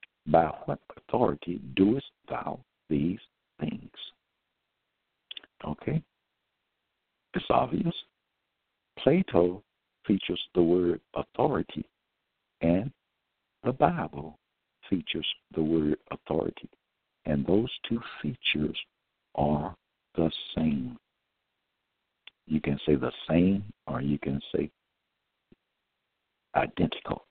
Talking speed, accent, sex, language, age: 85 wpm, American, male, English, 60-79